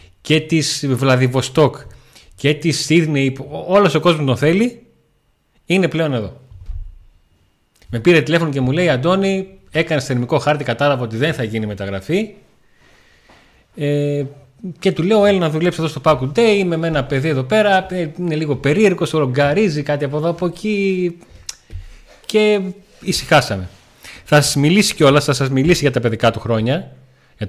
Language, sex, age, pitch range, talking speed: Greek, male, 30-49, 115-165 Hz, 155 wpm